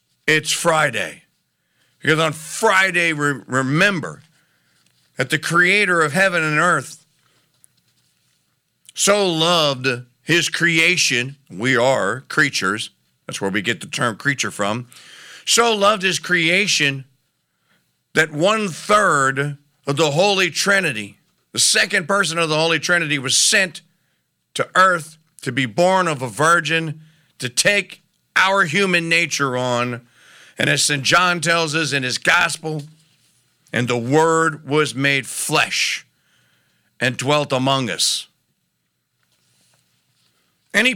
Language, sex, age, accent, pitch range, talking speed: English, male, 50-69, American, 125-170 Hz, 120 wpm